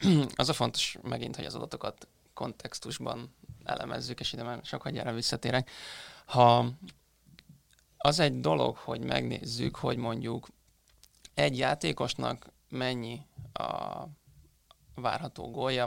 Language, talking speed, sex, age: Hungarian, 105 wpm, male, 20-39